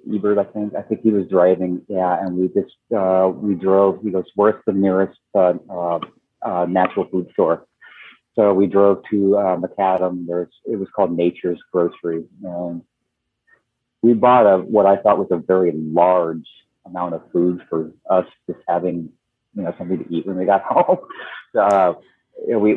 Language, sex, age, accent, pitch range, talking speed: English, male, 40-59, American, 85-100 Hz, 175 wpm